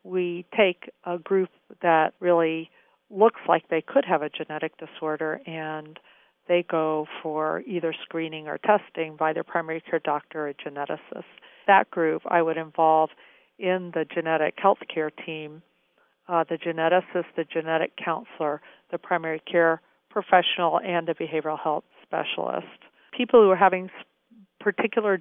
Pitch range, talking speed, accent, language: 160-180 Hz, 140 wpm, American, English